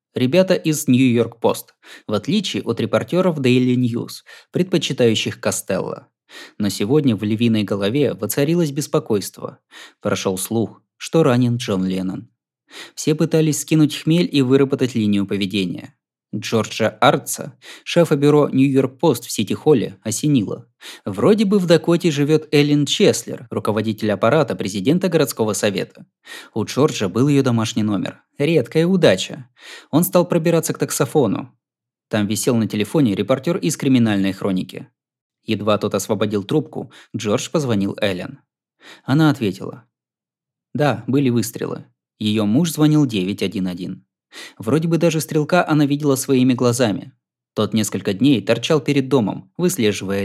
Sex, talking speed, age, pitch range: male, 125 wpm, 20-39, 110-155 Hz